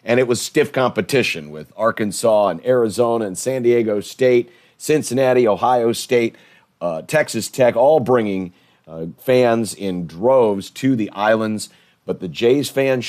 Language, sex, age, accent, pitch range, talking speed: English, male, 40-59, American, 105-125 Hz, 145 wpm